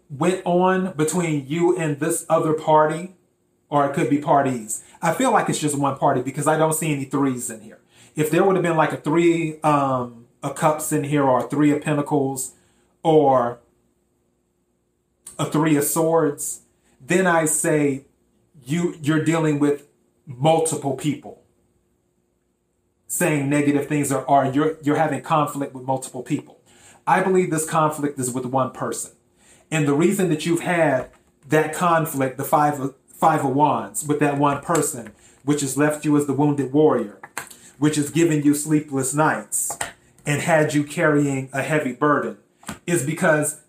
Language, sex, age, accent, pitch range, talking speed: English, male, 30-49, American, 135-165 Hz, 165 wpm